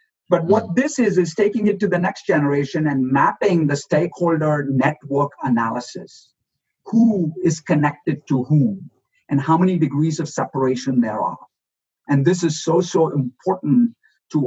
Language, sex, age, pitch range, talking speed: English, male, 50-69, 145-185 Hz, 155 wpm